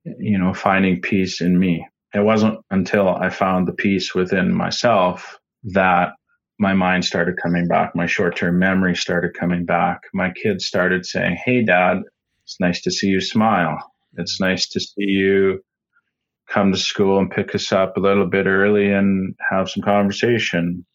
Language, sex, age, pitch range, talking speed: English, male, 30-49, 85-95 Hz, 170 wpm